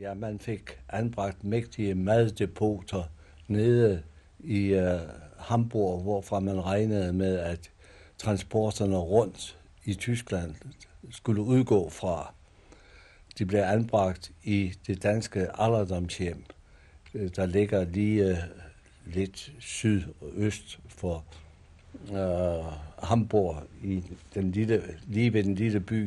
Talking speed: 110 wpm